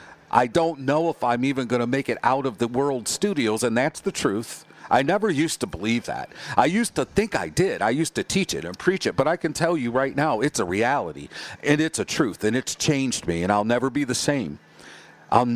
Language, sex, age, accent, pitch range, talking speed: English, male, 50-69, American, 110-140 Hz, 245 wpm